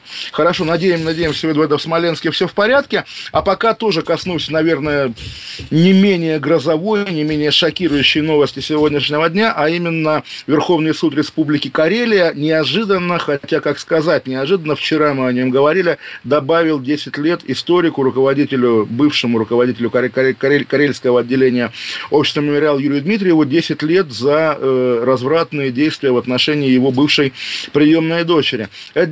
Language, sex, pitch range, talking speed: Russian, male, 135-165 Hz, 140 wpm